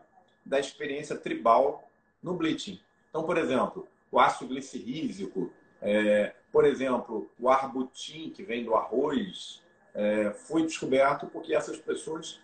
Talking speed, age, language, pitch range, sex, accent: 125 wpm, 40-59, Portuguese, 110-165 Hz, male, Brazilian